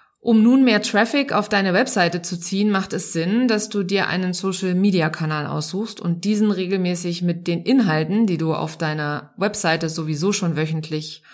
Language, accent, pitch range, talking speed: German, German, 165-215 Hz, 170 wpm